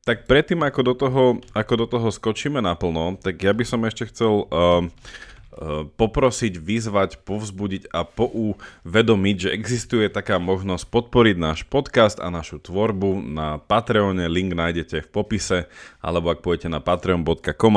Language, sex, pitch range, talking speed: Slovak, male, 90-110 Hz, 150 wpm